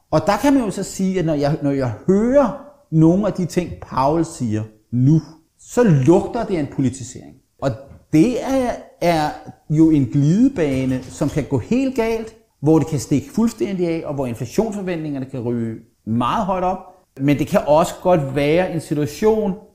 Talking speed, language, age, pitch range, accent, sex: 180 wpm, Danish, 30-49, 135-170 Hz, native, male